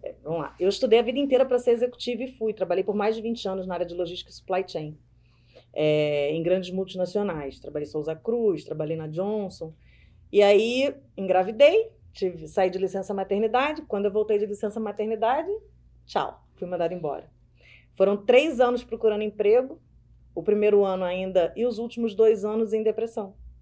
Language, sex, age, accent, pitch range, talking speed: Portuguese, female, 30-49, Brazilian, 185-270 Hz, 170 wpm